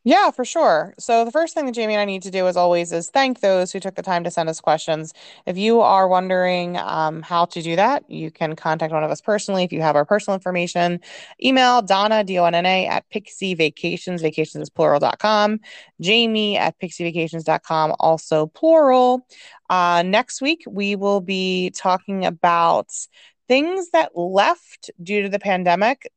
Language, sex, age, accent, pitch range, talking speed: English, female, 20-39, American, 155-205 Hz, 180 wpm